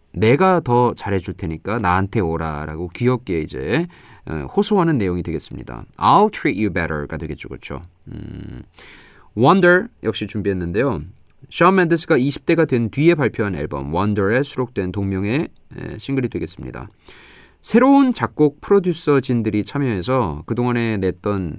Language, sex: Korean, male